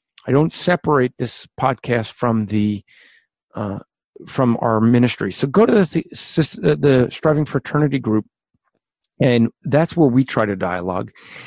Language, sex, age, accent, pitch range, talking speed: English, male, 50-69, American, 125-160 Hz, 140 wpm